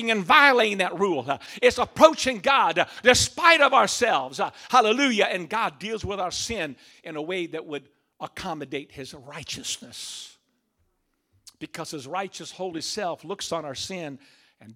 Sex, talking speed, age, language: male, 155 wpm, 50-69, English